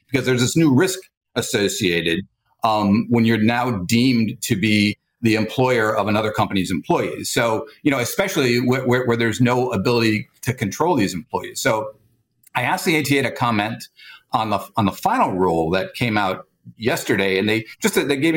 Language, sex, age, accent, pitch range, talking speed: English, male, 50-69, American, 110-135 Hz, 180 wpm